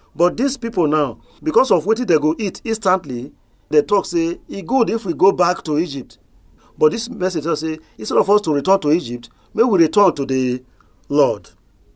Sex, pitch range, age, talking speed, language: male, 125-190 Hz, 40-59, 195 wpm, English